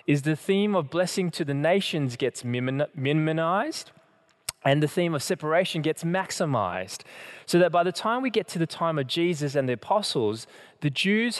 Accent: Australian